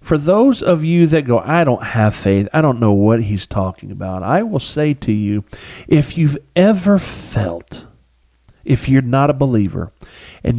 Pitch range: 100-135 Hz